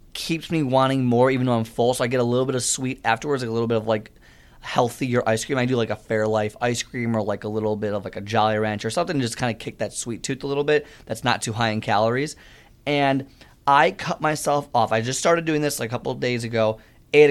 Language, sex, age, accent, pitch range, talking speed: English, male, 20-39, American, 110-140 Hz, 275 wpm